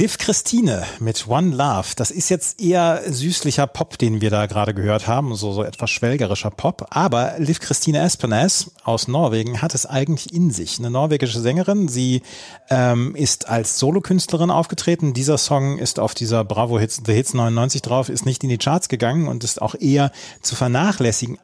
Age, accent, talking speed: 40-59, German, 180 wpm